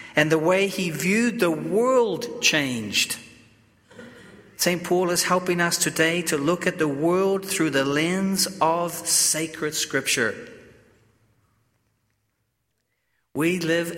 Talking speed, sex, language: 115 wpm, male, English